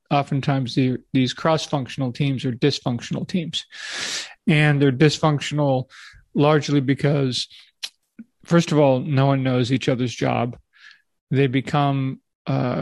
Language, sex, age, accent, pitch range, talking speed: English, male, 40-59, American, 130-145 Hz, 110 wpm